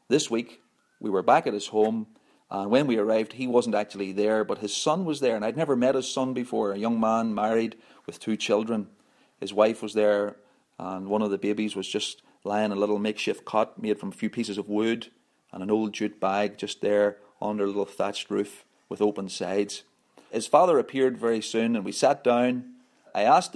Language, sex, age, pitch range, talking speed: English, male, 40-59, 105-120 Hz, 215 wpm